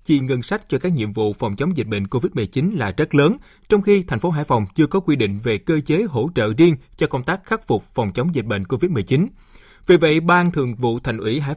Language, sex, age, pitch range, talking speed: Vietnamese, male, 20-39, 120-175 Hz, 255 wpm